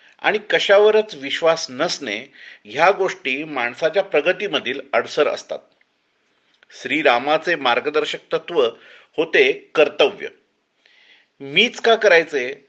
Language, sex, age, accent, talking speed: Marathi, male, 40-59, native, 75 wpm